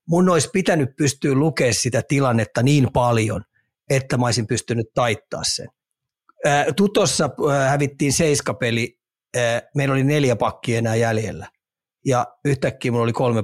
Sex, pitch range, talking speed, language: male, 120-145 Hz, 130 wpm, Finnish